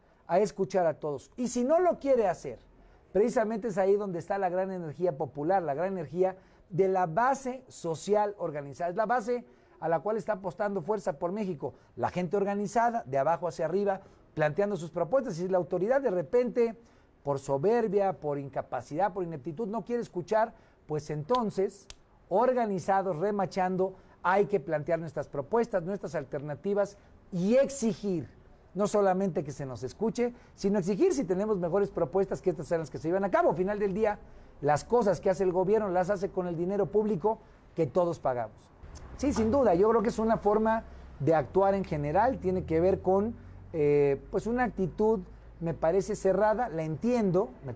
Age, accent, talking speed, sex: 50-69, Mexican, 180 wpm, male